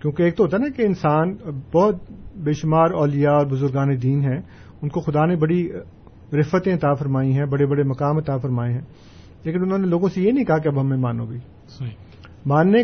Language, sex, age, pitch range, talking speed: Urdu, male, 50-69, 125-165 Hz, 205 wpm